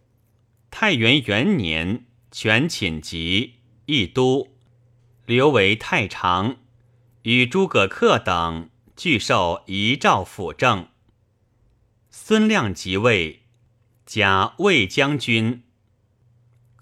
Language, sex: Chinese, male